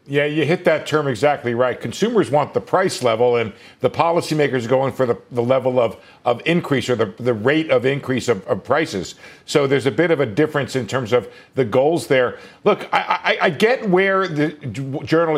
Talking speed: 210 wpm